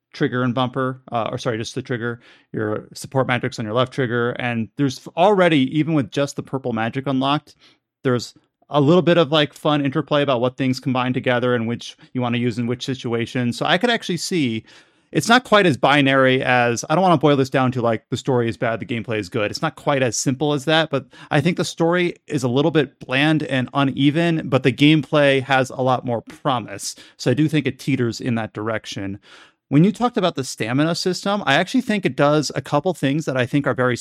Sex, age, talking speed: male, 30-49, 235 wpm